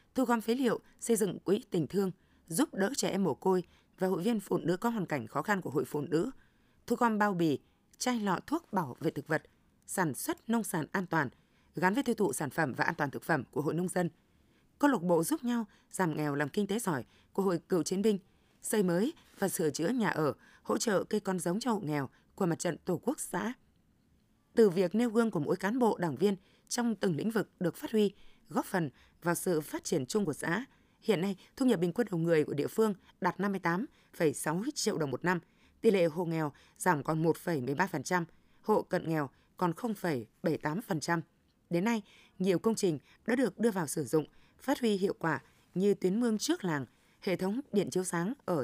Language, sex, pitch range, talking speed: Vietnamese, female, 165-225 Hz, 230 wpm